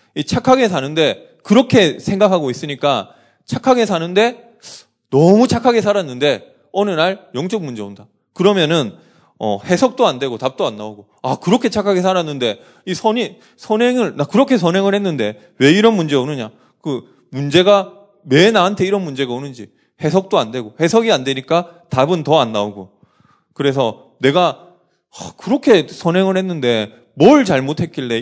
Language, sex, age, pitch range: Korean, male, 20-39, 130-200 Hz